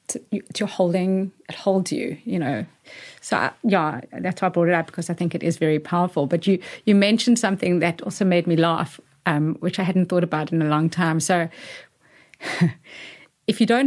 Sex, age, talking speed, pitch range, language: female, 30-49, 210 wpm, 170-220 Hz, English